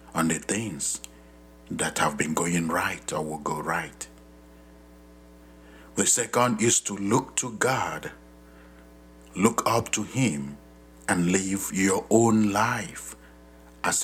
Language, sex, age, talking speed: English, male, 60-79, 125 wpm